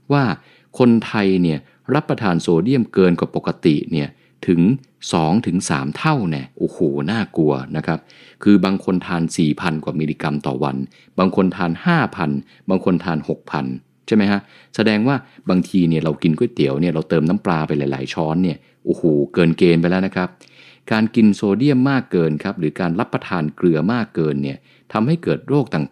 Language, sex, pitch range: English, male, 80-105 Hz